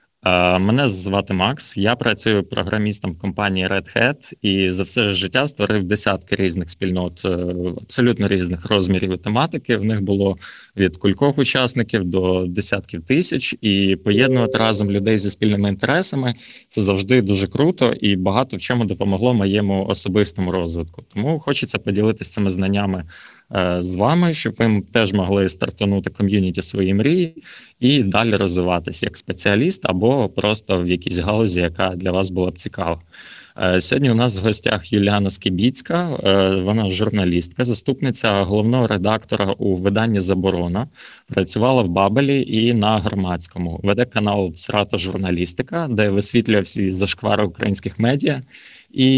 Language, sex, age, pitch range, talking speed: Ukrainian, male, 20-39, 95-120 Hz, 140 wpm